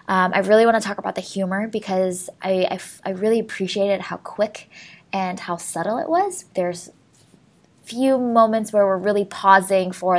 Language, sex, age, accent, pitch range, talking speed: English, female, 20-39, American, 185-235 Hz, 185 wpm